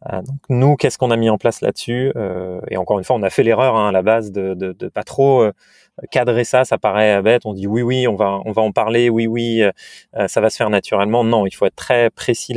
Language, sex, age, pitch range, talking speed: French, male, 30-49, 105-125 Hz, 265 wpm